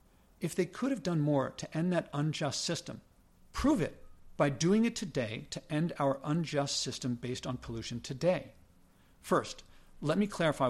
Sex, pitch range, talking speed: male, 130-160 Hz, 170 wpm